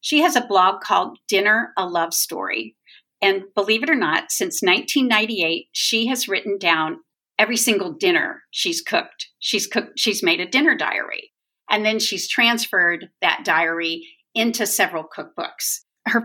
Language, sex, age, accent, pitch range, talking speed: English, female, 40-59, American, 175-255 Hz, 150 wpm